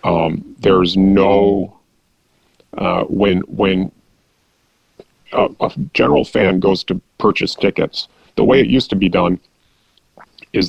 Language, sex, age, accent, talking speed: English, male, 30-49, American, 125 wpm